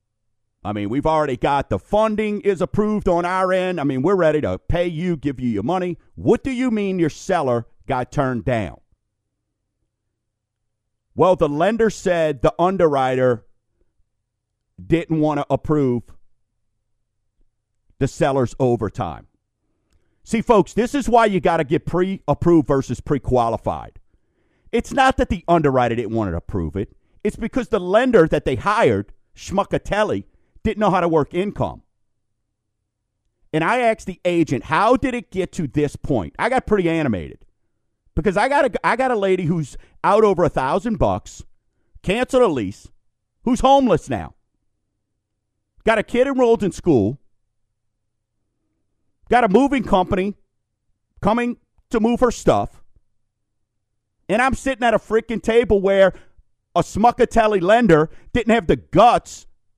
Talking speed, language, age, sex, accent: 150 wpm, English, 50-69, male, American